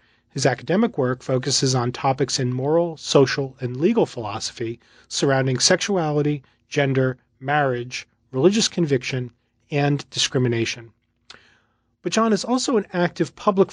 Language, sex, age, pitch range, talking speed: English, male, 40-59, 125-175 Hz, 120 wpm